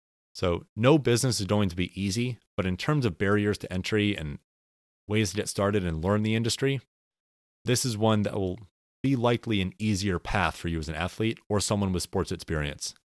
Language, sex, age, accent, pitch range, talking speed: English, male, 30-49, American, 85-125 Hz, 200 wpm